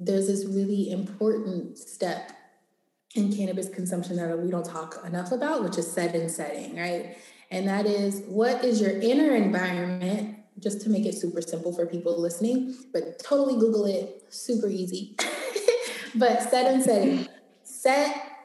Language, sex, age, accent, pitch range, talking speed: English, female, 20-39, American, 180-230 Hz, 155 wpm